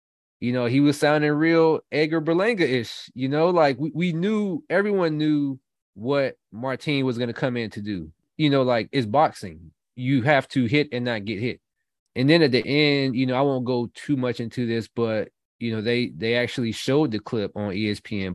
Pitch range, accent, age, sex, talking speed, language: 105-140 Hz, American, 20-39, male, 205 wpm, English